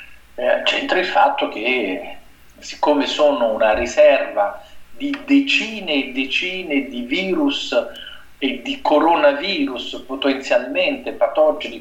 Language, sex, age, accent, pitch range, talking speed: Italian, male, 50-69, native, 190-300 Hz, 95 wpm